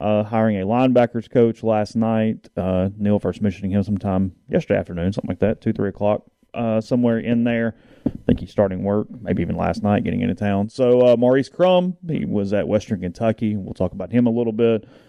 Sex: male